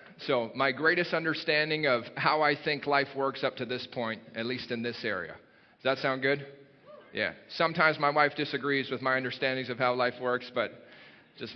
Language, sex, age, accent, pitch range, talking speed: English, male, 30-49, American, 125-160 Hz, 190 wpm